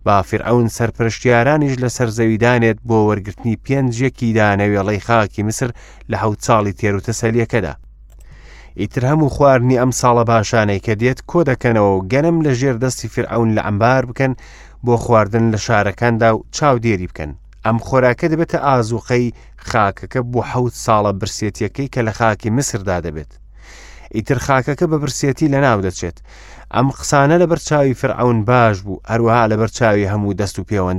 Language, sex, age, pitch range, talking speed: English, male, 30-49, 100-130 Hz, 145 wpm